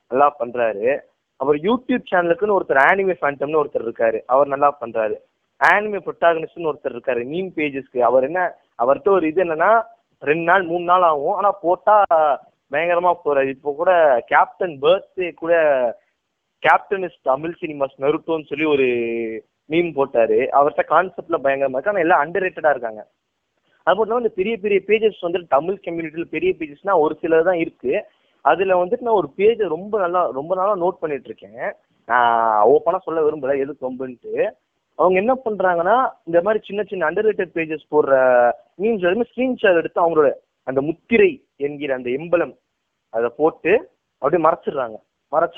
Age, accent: 20-39, native